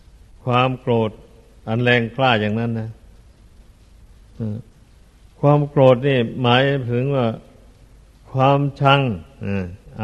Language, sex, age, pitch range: Thai, male, 60-79, 105-130 Hz